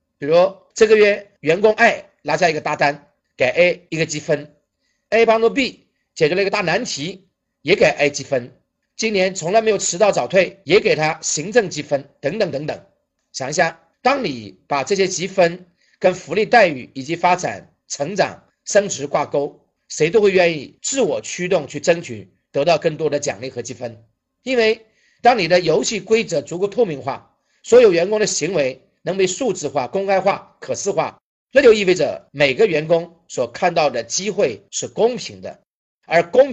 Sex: male